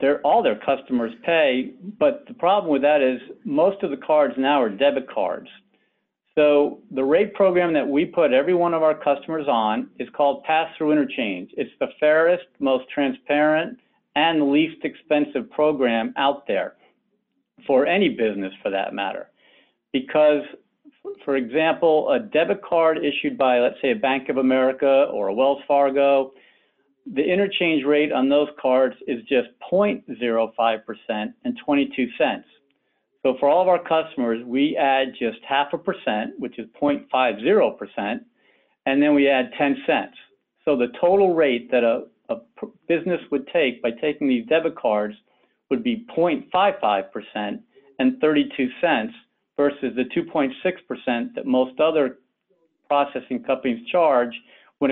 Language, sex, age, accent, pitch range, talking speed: English, male, 50-69, American, 130-170 Hz, 145 wpm